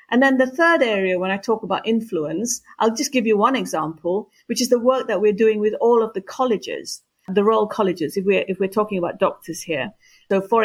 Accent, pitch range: British, 185-240 Hz